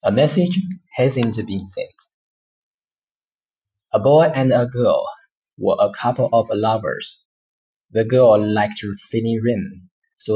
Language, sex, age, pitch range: Chinese, male, 30-49, 105-135 Hz